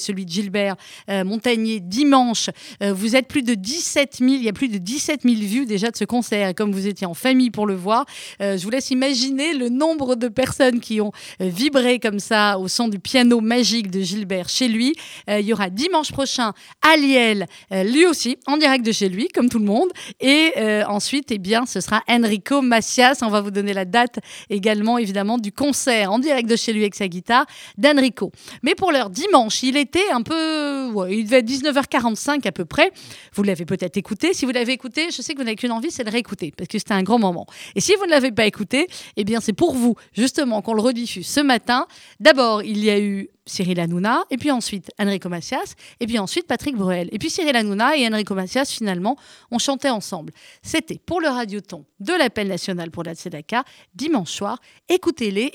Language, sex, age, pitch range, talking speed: French, female, 30-49, 205-270 Hz, 220 wpm